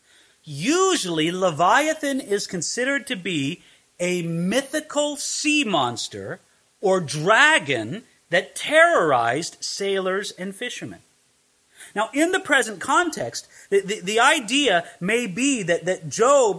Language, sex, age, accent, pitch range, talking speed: English, male, 30-49, American, 175-250 Hz, 110 wpm